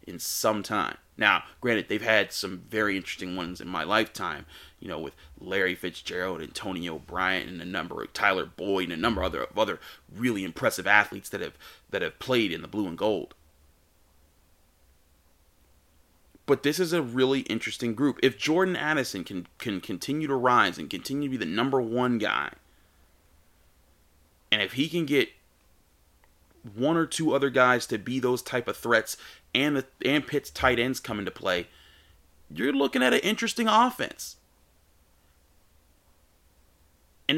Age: 30-49